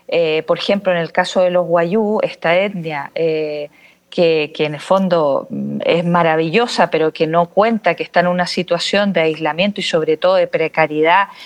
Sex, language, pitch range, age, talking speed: female, Spanish, 175-250 Hz, 40-59, 185 wpm